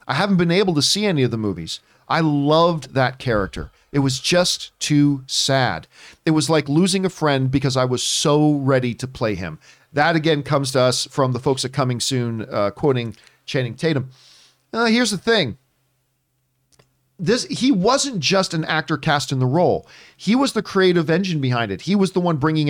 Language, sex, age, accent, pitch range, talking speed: English, male, 40-59, American, 130-190 Hz, 195 wpm